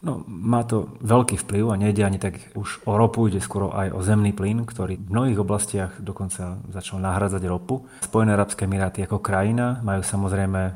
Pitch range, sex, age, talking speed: 90-105 Hz, male, 30-49, 185 wpm